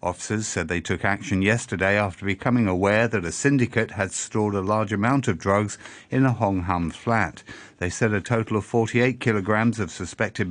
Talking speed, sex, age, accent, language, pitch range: 190 wpm, male, 50-69, British, English, 100-120 Hz